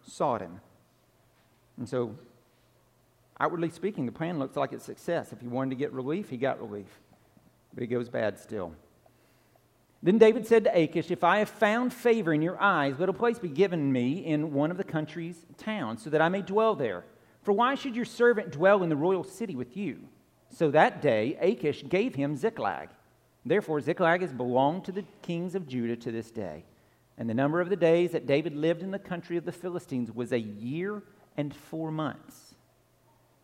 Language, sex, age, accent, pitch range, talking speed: English, male, 50-69, American, 135-185 Hz, 195 wpm